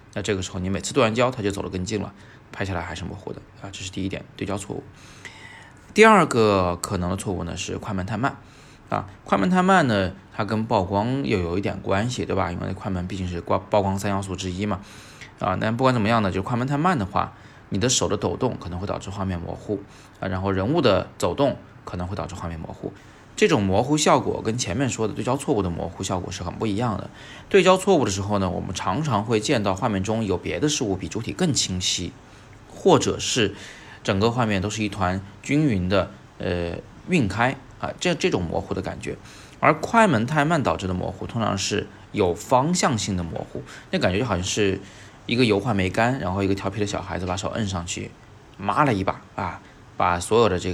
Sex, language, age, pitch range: male, Chinese, 20-39, 95-120 Hz